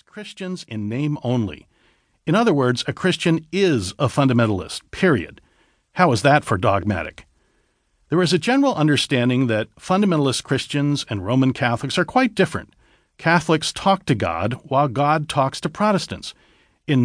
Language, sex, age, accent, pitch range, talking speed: English, male, 50-69, American, 115-155 Hz, 150 wpm